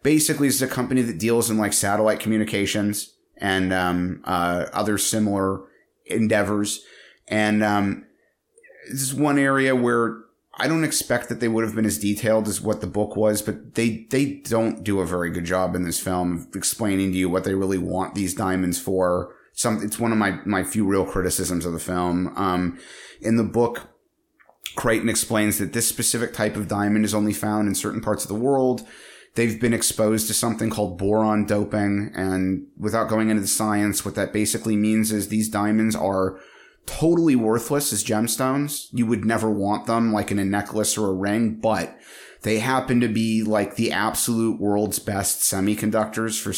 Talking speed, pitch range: 185 wpm, 100-115 Hz